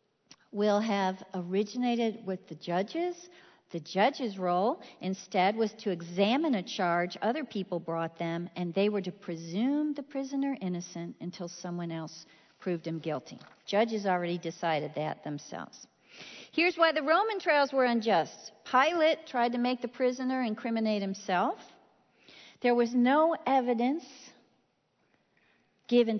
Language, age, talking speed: English, 50-69, 135 wpm